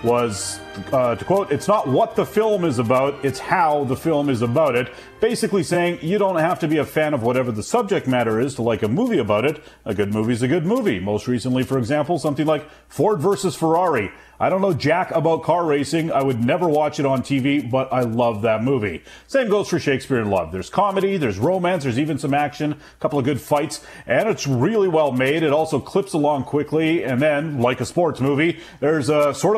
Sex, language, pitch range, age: male, English, 125-165 Hz, 40-59